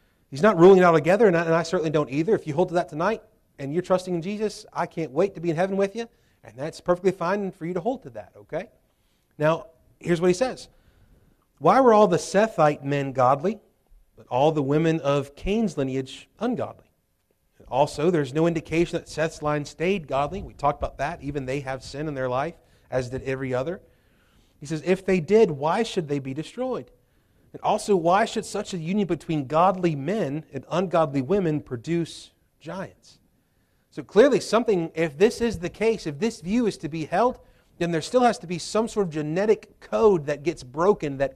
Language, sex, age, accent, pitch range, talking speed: English, male, 30-49, American, 145-190 Hz, 205 wpm